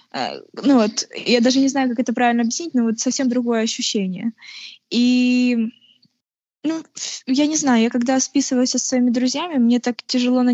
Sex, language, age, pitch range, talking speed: female, Ukrainian, 20-39, 220-260 Hz, 170 wpm